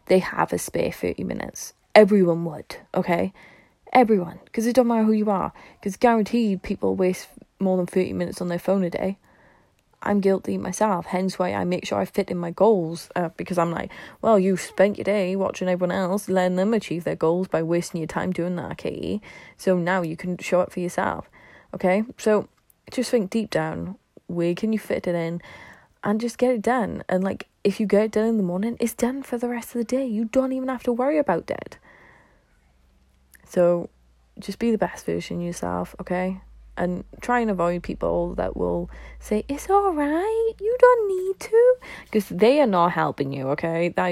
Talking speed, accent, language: 205 wpm, British, English